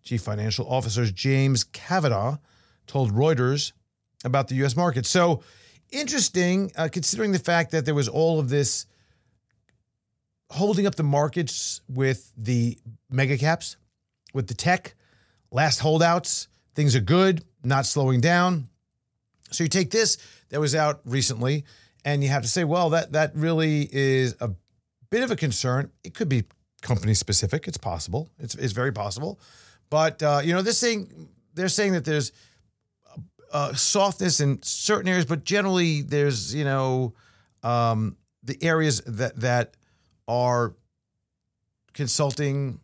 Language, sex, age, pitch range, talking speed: English, male, 40-59, 110-155 Hz, 145 wpm